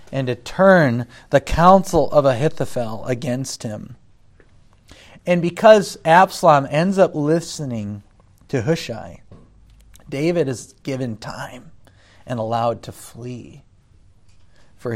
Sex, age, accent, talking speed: male, 40-59, American, 105 wpm